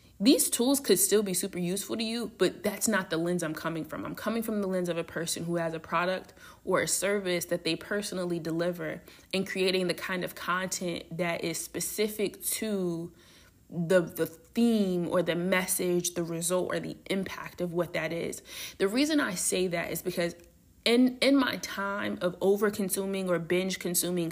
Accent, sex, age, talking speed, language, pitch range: American, female, 30-49, 190 wpm, English, 175-200 Hz